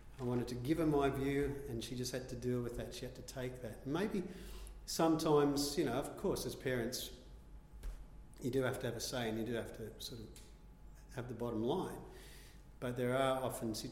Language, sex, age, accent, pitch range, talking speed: English, male, 40-59, Australian, 110-135 Hz, 215 wpm